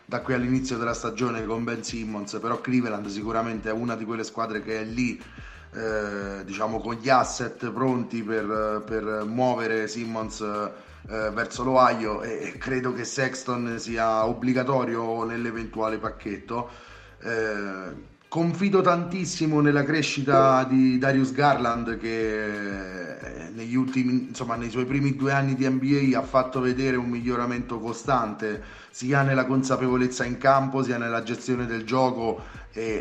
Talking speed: 130 wpm